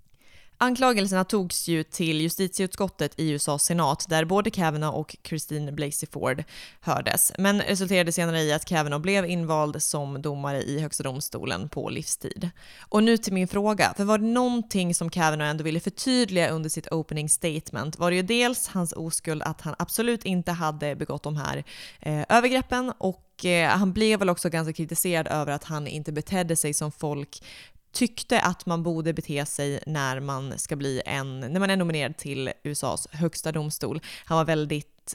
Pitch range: 150-190 Hz